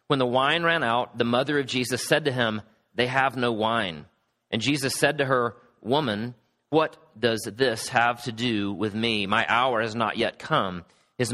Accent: American